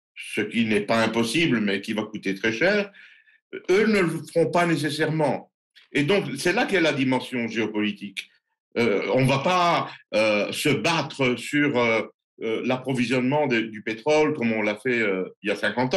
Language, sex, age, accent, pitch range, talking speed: French, male, 60-79, French, 120-170 Hz, 185 wpm